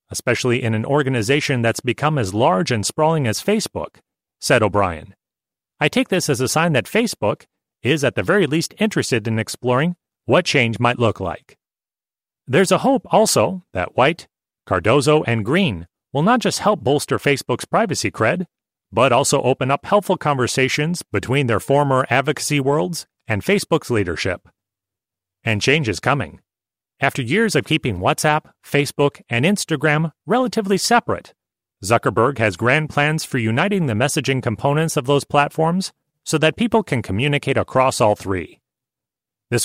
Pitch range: 115-155 Hz